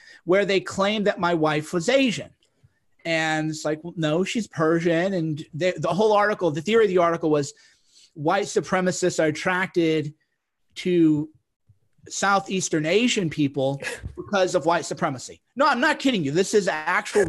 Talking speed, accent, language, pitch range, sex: 160 wpm, American, English, 160-195 Hz, male